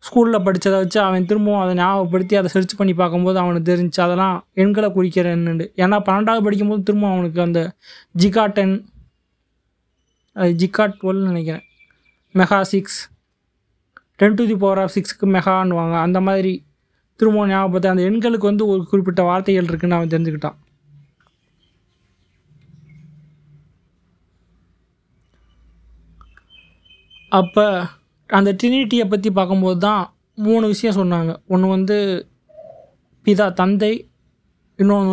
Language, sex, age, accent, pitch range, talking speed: Tamil, male, 20-39, native, 165-200 Hz, 105 wpm